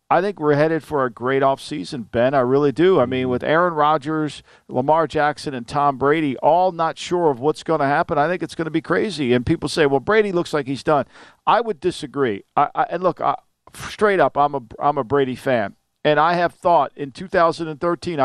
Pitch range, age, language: 135-165 Hz, 50-69, English